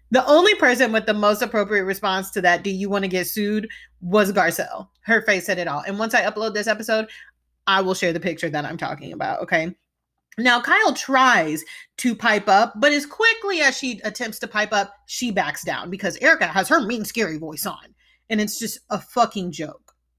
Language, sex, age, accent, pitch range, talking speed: English, female, 30-49, American, 160-215 Hz, 210 wpm